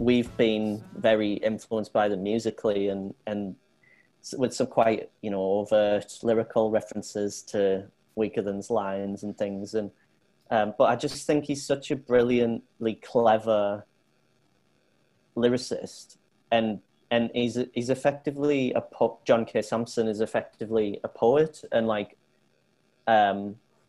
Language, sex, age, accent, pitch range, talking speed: English, male, 30-49, British, 105-120 Hz, 130 wpm